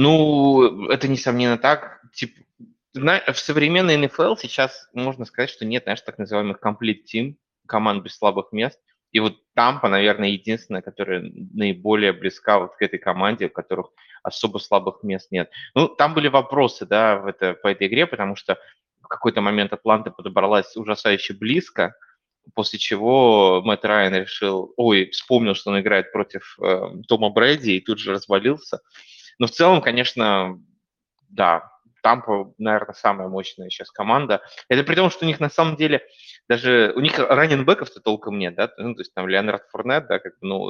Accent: native